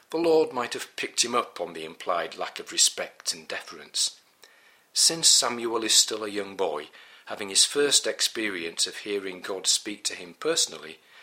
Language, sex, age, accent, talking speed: English, male, 50-69, British, 175 wpm